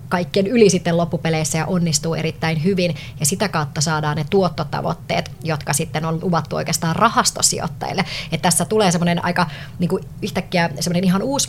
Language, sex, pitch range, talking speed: Finnish, male, 150-175 Hz, 155 wpm